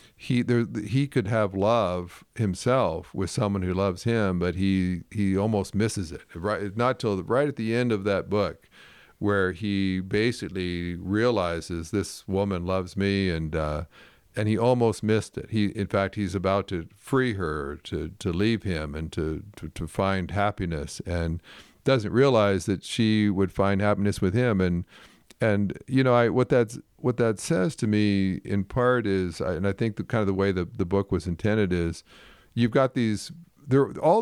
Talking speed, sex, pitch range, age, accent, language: 185 wpm, male, 95-110 Hz, 50-69, American, English